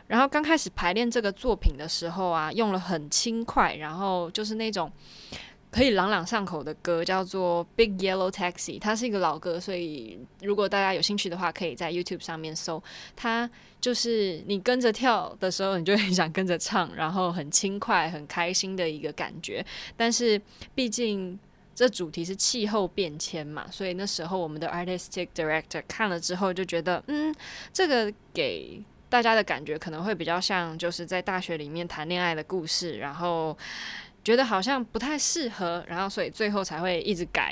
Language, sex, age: Chinese, female, 20-39